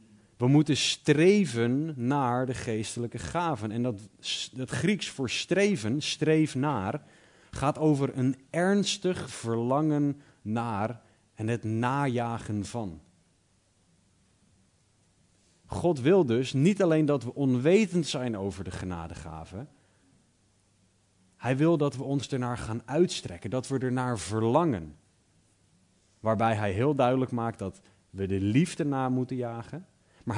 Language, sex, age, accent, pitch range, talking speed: Dutch, male, 40-59, Dutch, 100-135 Hz, 120 wpm